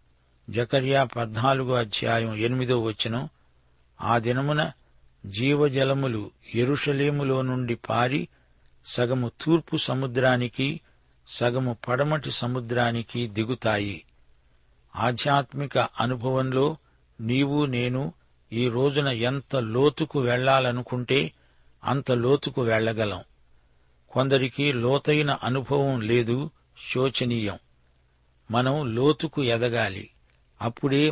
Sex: male